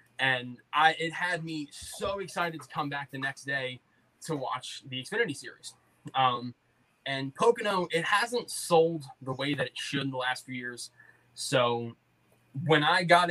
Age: 20-39